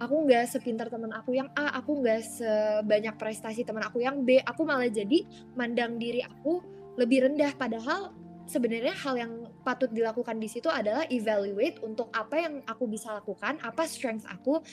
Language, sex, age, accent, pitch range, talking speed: Indonesian, female, 20-39, native, 215-255 Hz, 170 wpm